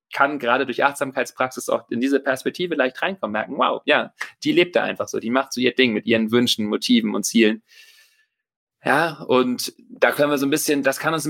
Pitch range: 110-145 Hz